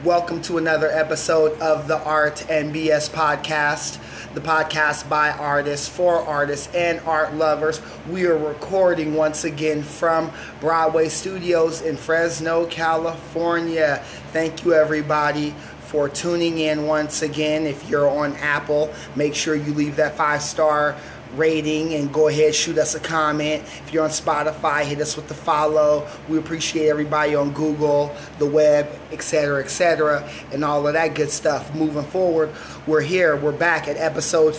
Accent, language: American, English